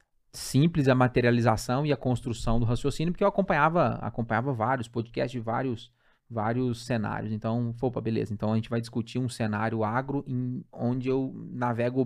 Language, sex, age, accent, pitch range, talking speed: Portuguese, male, 20-39, Brazilian, 115-125 Hz, 165 wpm